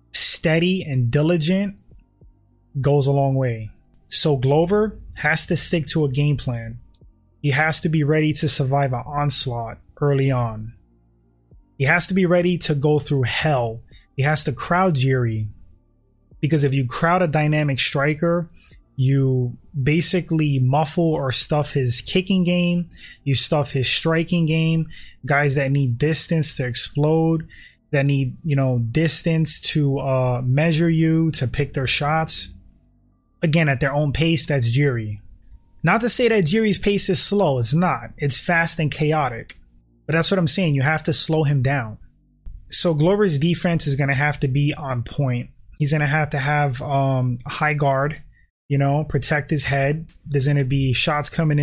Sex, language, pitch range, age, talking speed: male, English, 130-160 Hz, 20-39, 165 wpm